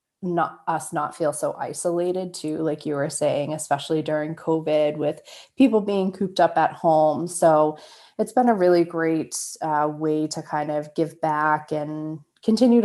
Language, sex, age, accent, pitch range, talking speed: English, female, 20-39, American, 155-175 Hz, 170 wpm